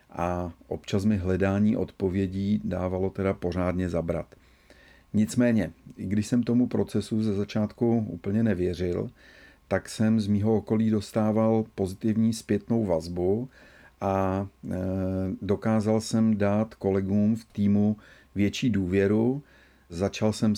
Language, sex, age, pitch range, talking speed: Czech, male, 40-59, 90-105 Hz, 115 wpm